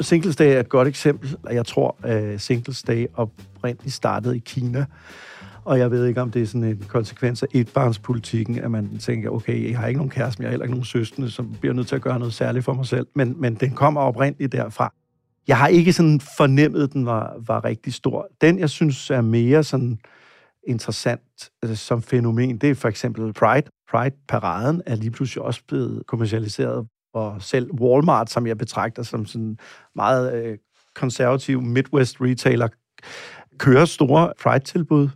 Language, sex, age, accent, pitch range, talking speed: Danish, male, 50-69, native, 115-140 Hz, 190 wpm